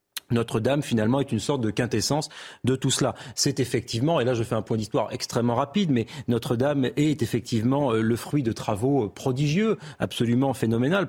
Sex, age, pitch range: male, 30-49, 120-150 Hz